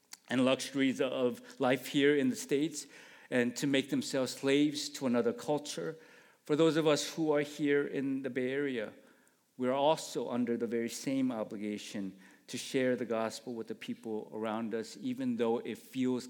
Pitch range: 115-150 Hz